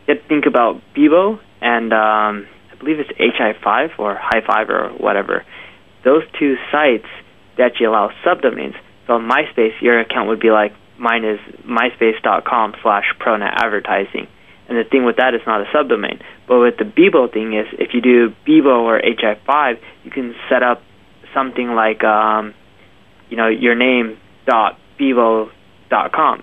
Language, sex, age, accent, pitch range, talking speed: English, male, 20-39, American, 110-125 Hz, 150 wpm